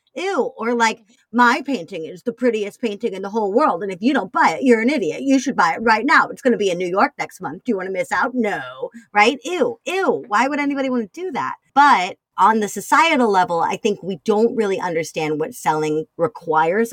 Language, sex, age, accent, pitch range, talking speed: English, female, 40-59, American, 170-255 Hz, 240 wpm